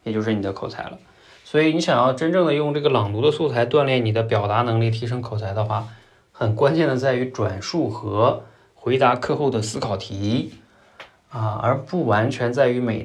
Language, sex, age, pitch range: Chinese, male, 20-39, 110-155 Hz